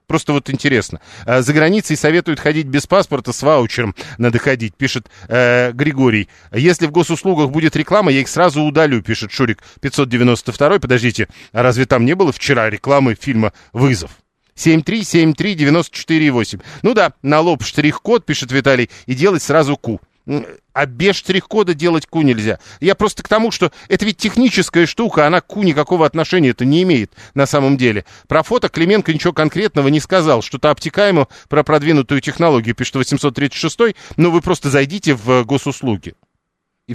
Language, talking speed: Russian, 160 wpm